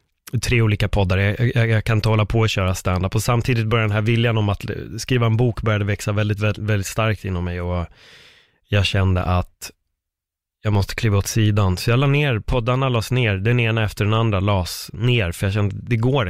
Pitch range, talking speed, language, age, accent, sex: 95-115 Hz, 215 wpm, Swedish, 30-49, native, male